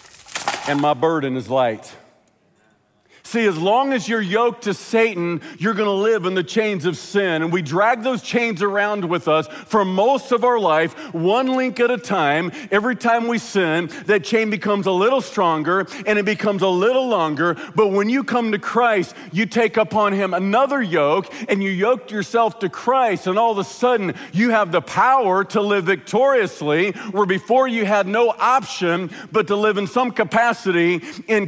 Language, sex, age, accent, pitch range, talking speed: English, male, 40-59, American, 180-230 Hz, 190 wpm